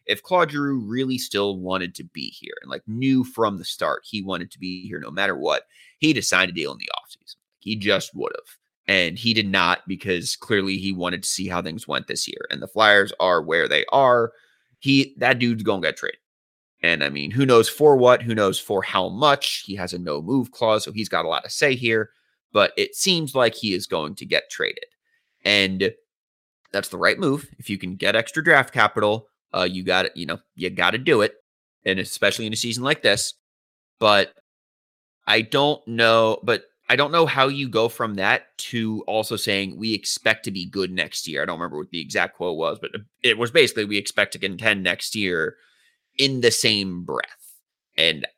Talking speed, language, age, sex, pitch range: 215 wpm, English, 30-49, male, 95-130 Hz